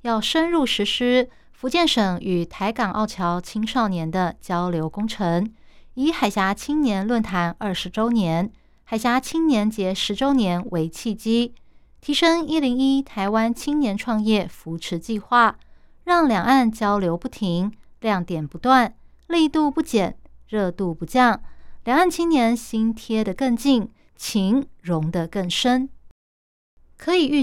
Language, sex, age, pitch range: Chinese, female, 20-39, 190-260 Hz